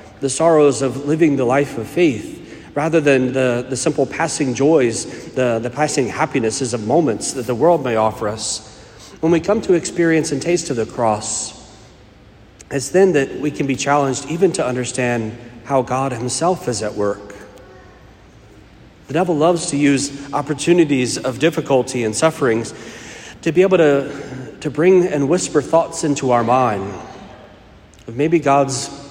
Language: English